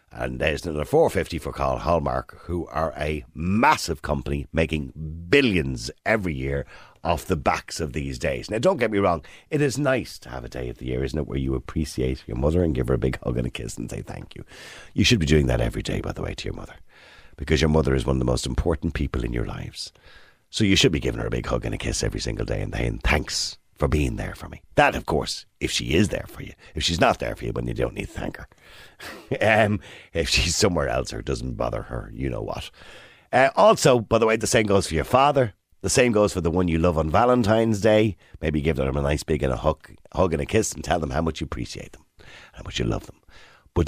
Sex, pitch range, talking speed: male, 70-100 Hz, 260 wpm